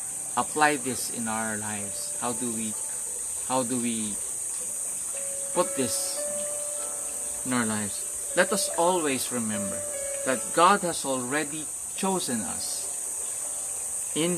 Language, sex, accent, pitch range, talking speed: English, male, Filipino, 110-165 Hz, 115 wpm